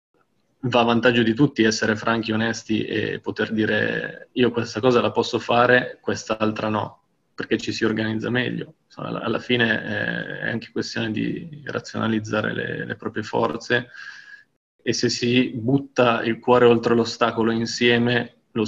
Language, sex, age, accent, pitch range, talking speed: Italian, male, 20-39, native, 110-120 Hz, 145 wpm